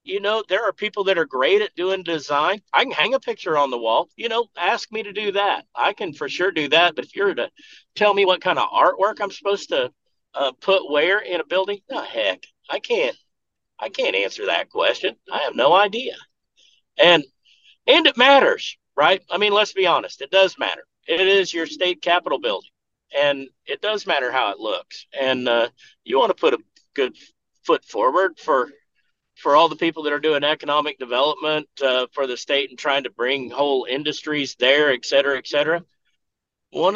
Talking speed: 205 wpm